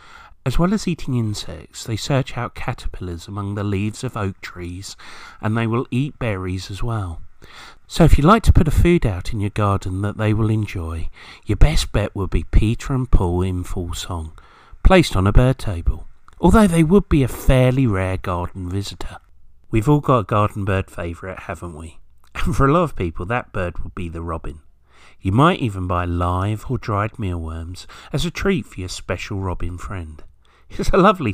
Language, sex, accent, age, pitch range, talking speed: English, male, British, 40-59, 90-125 Hz, 195 wpm